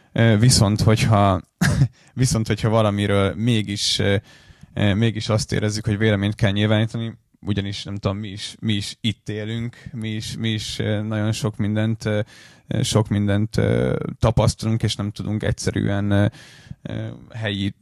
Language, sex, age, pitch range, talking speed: Hungarian, male, 20-39, 105-120 Hz, 125 wpm